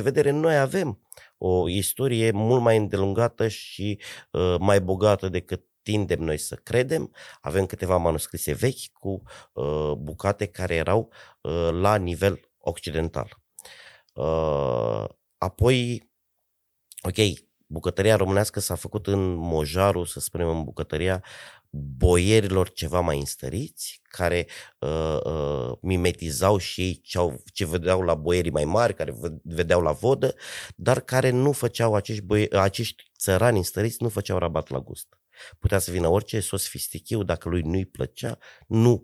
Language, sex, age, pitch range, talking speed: Romanian, male, 30-49, 85-105 Hz, 130 wpm